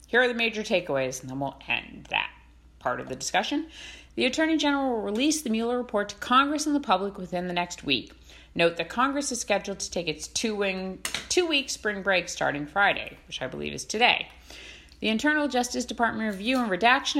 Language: English